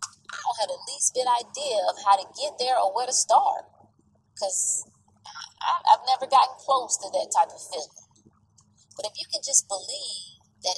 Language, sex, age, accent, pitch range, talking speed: English, female, 20-39, American, 180-275 Hz, 185 wpm